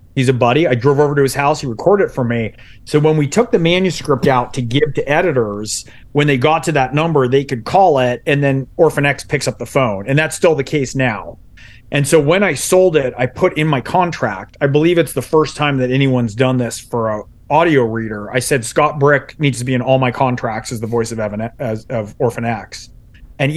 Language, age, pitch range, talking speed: English, 30-49, 120-150 Hz, 240 wpm